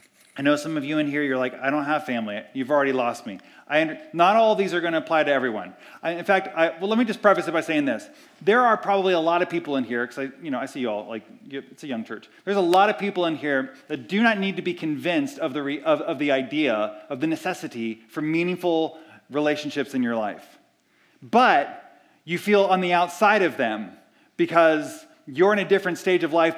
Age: 30-49